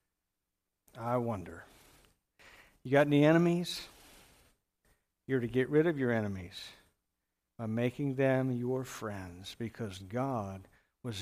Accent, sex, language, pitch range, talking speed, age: American, male, English, 110-135 Hz, 110 wpm, 60-79